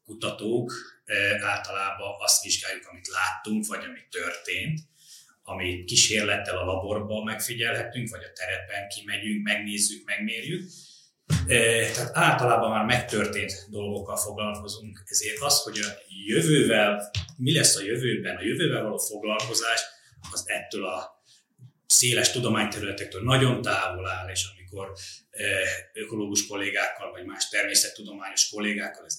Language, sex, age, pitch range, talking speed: Hungarian, male, 30-49, 105-120 Hz, 115 wpm